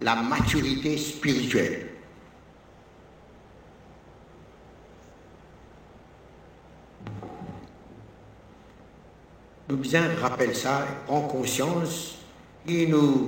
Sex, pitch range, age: male, 120-165 Hz, 60-79